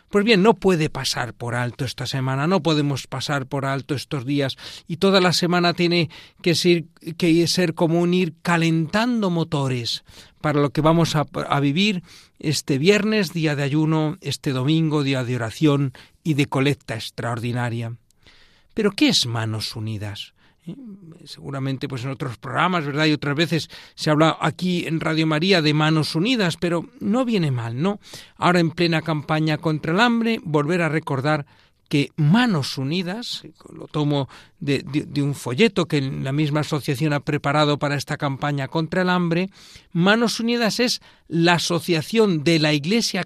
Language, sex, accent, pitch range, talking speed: Spanish, male, Spanish, 140-180 Hz, 165 wpm